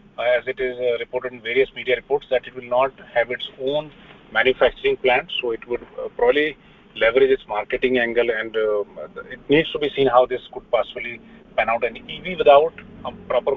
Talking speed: 205 wpm